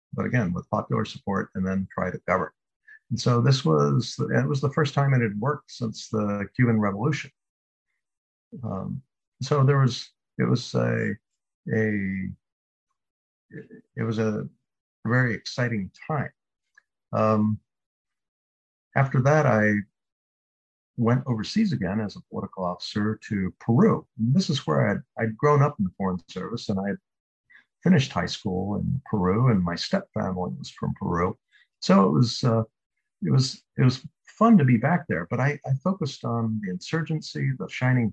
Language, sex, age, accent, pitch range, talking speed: English, male, 50-69, American, 100-140 Hz, 155 wpm